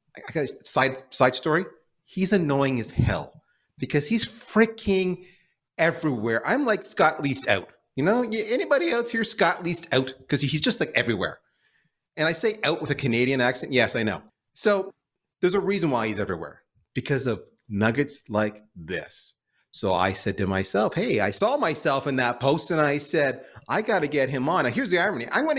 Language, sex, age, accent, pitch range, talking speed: English, male, 30-49, American, 120-170 Hz, 185 wpm